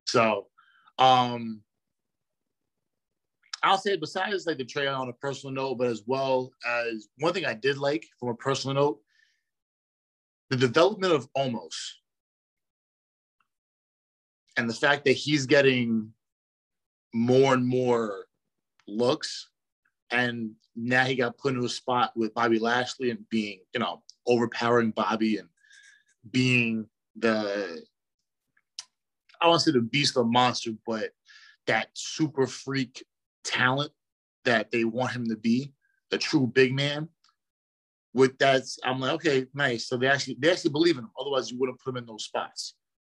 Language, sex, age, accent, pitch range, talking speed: English, male, 30-49, American, 115-135 Hz, 145 wpm